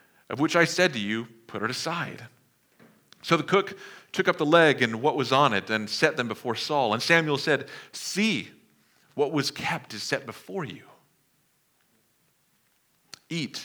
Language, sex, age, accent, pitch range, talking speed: English, male, 40-59, American, 110-155 Hz, 165 wpm